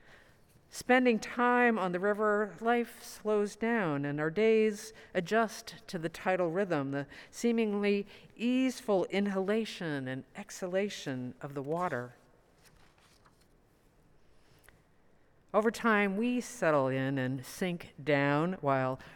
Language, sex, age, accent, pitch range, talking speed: English, female, 50-69, American, 155-210 Hz, 105 wpm